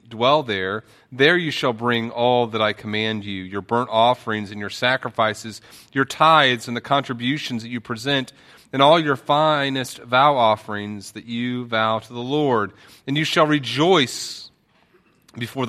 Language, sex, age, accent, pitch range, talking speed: English, male, 40-59, American, 115-140 Hz, 160 wpm